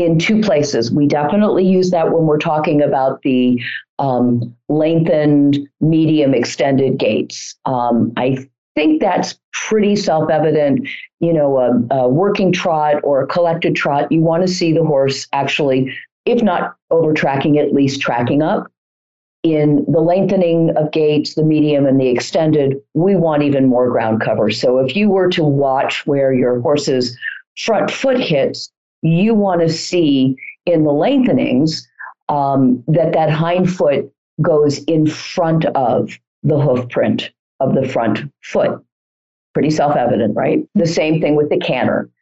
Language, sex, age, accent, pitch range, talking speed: English, female, 50-69, American, 130-165 Hz, 150 wpm